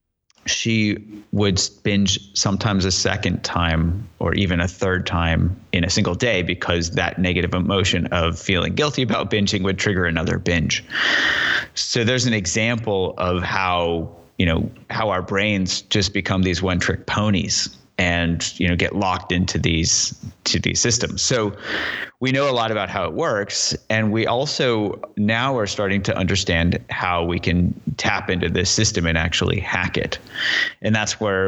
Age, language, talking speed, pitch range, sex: 30-49, English, 165 wpm, 85-105 Hz, male